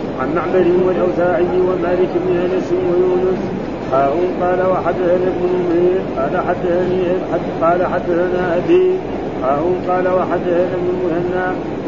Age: 50-69